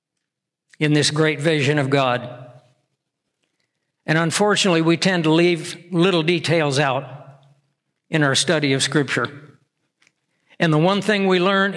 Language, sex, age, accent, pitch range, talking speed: English, male, 60-79, American, 150-170 Hz, 135 wpm